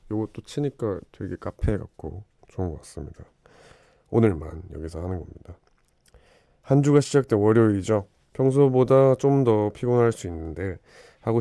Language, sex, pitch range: Korean, male, 90-115 Hz